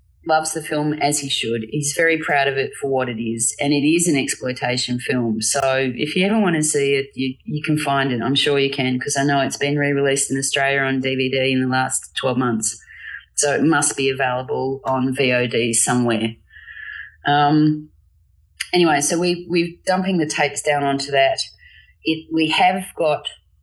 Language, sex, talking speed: English, female, 195 wpm